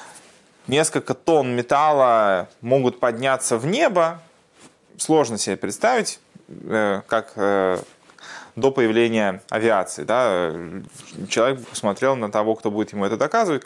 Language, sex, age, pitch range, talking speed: Russian, male, 20-39, 105-135 Hz, 110 wpm